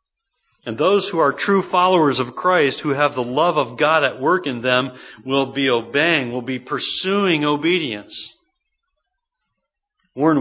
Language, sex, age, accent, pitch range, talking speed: English, male, 40-59, American, 125-185 Hz, 150 wpm